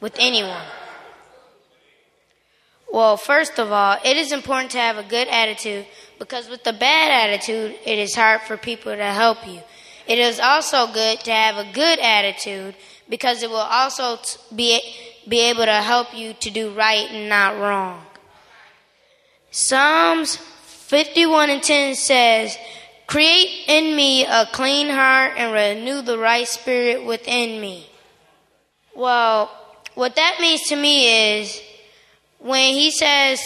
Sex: female